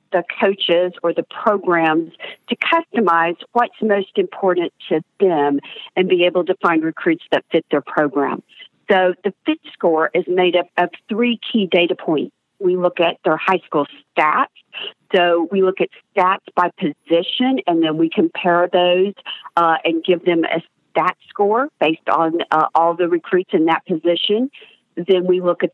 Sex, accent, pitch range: female, American, 170-220 Hz